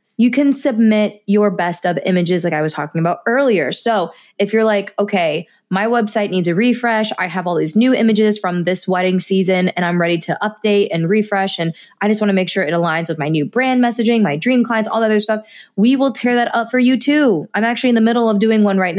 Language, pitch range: English, 185-235 Hz